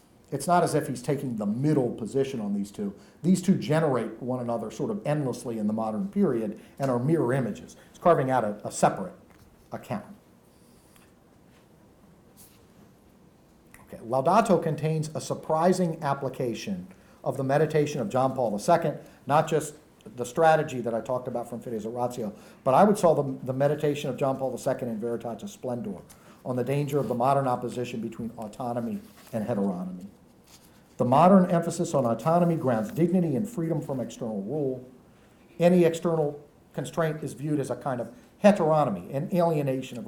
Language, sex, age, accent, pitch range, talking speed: English, male, 50-69, American, 120-165 Hz, 165 wpm